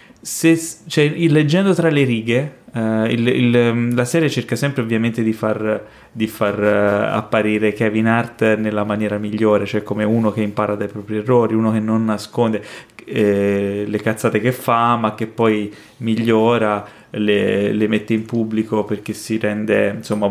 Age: 30-49